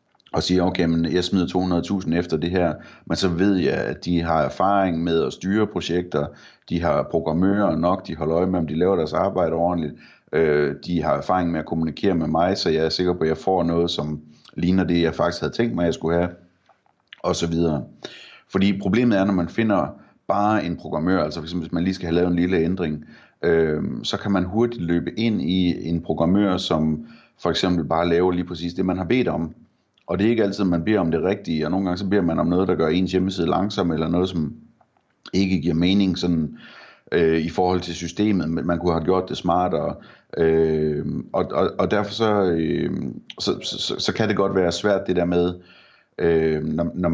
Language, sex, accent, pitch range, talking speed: Danish, male, native, 80-95 Hz, 225 wpm